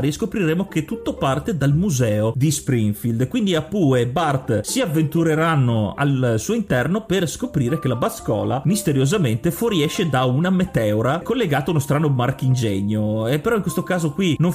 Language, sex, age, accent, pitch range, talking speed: Italian, male, 30-49, native, 130-175 Hz, 165 wpm